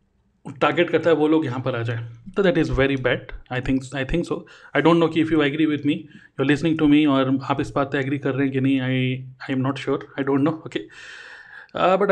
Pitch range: 140-175 Hz